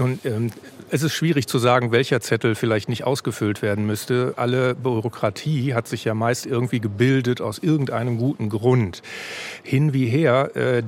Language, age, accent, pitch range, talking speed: German, 40-59, German, 115-140 Hz, 160 wpm